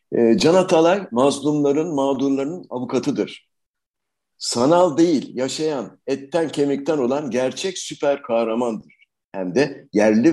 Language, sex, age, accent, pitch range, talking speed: Turkish, male, 60-79, native, 110-150 Hz, 95 wpm